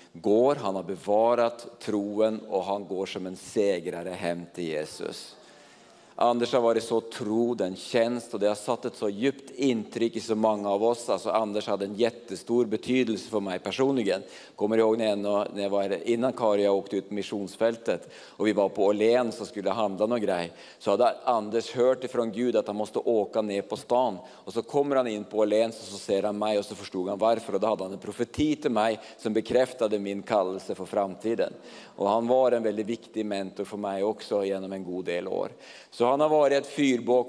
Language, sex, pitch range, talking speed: English, male, 100-120 Hz, 205 wpm